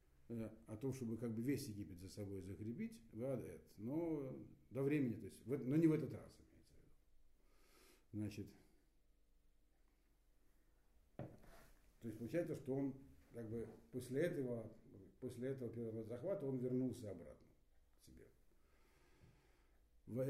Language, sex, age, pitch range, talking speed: Russian, male, 70-89, 100-135 Hz, 125 wpm